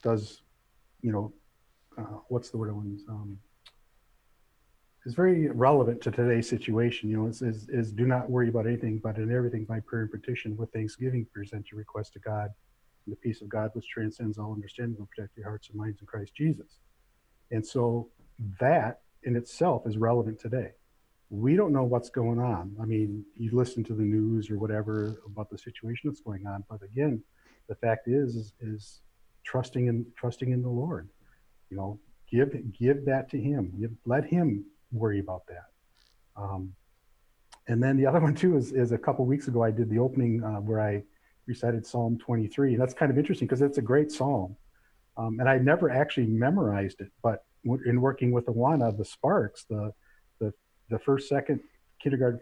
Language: English